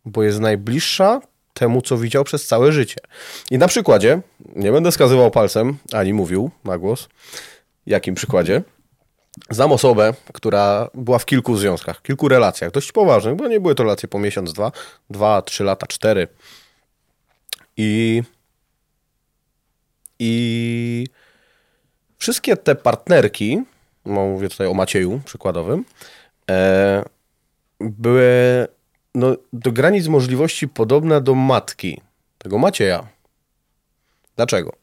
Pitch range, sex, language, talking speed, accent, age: 105-135 Hz, male, Polish, 115 wpm, native, 30-49